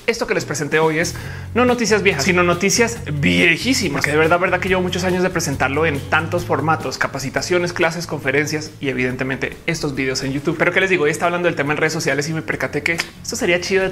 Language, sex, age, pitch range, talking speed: Spanish, male, 30-49, 145-180 Hz, 235 wpm